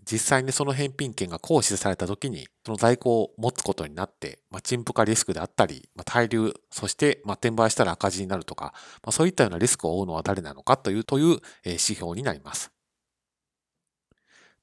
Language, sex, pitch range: Japanese, male, 95-140 Hz